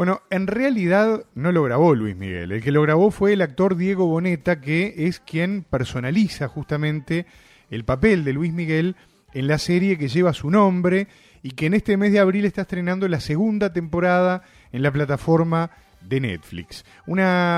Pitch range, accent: 145-195 Hz, Argentinian